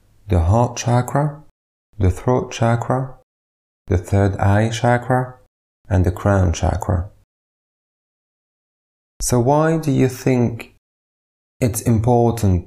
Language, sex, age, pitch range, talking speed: English, male, 20-39, 90-125 Hz, 100 wpm